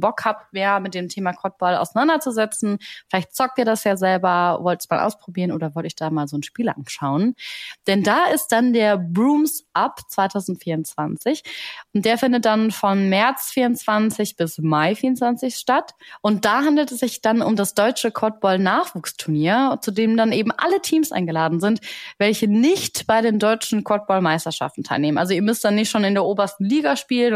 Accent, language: German, German